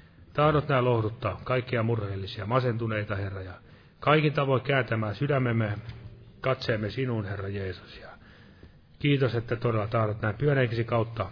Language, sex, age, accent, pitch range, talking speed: Finnish, male, 30-49, native, 100-125 Hz, 120 wpm